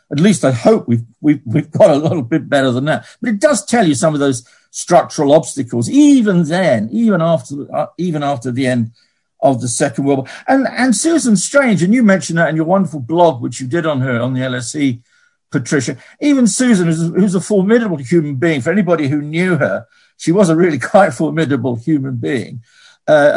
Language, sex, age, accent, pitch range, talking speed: English, male, 50-69, British, 140-210 Hz, 210 wpm